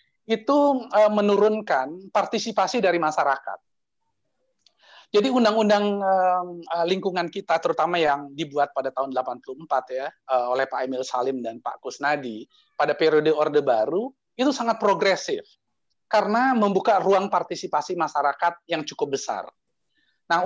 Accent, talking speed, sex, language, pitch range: native, 115 wpm, male, Indonesian, 155-215 Hz